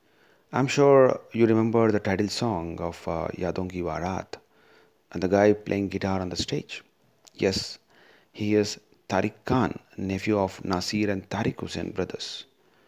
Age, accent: 30-49, native